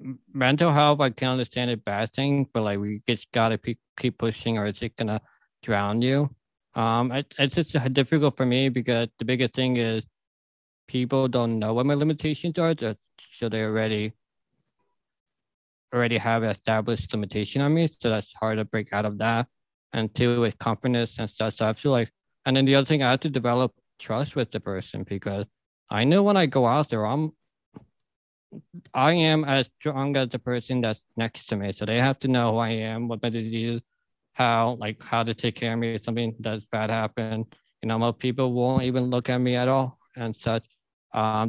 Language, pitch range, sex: English, 110-135 Hz, male